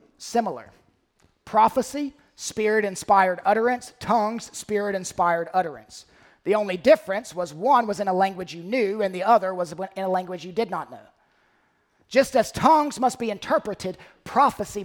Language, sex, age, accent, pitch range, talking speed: English, male, 40-59, American, 215-290 Hz, 155 wpm